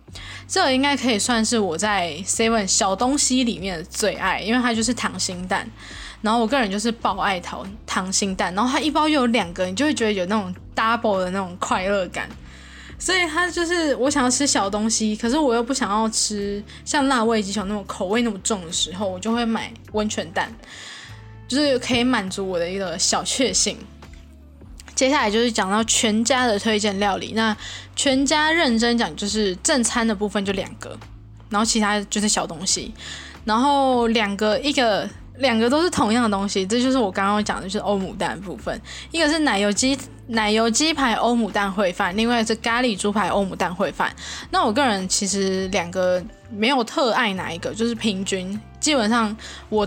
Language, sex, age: Chinese, female, 10-29